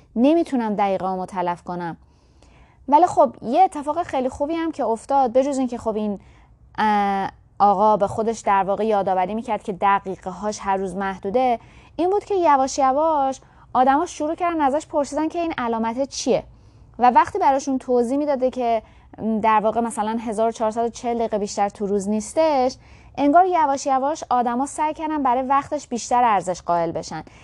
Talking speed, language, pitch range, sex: 155 wpm, Persian, 215-280 Hz, female